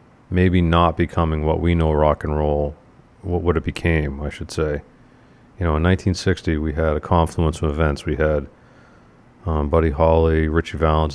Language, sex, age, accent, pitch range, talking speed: English, male, 40-59, American, 80-90 Hz, 170 wpm